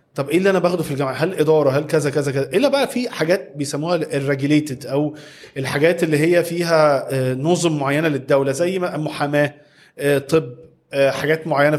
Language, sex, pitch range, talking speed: Arabic, male, 140-170 Hz, 170 wpm